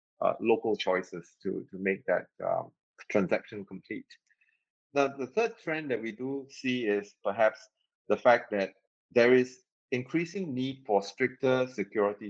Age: 30-49